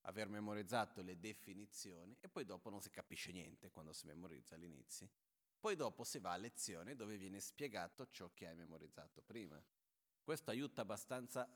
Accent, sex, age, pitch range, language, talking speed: native, male, 30-49, 85-105 Hz, Italian, 165 wpm